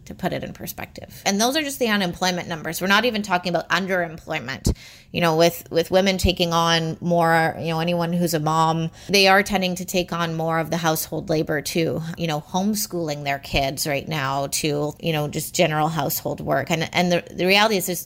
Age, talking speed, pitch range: 30-49, 215 wpm, 160-180 Hz